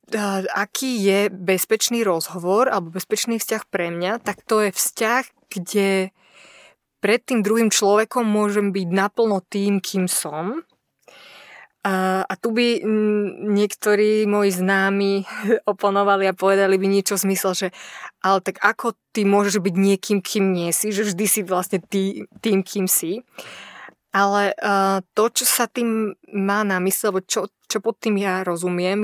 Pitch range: 190-210 Hz